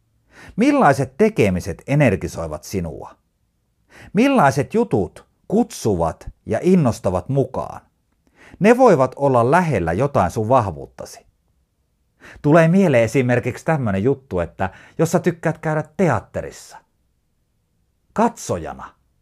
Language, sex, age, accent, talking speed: Finnish, male, 50-69, native, 90 wpm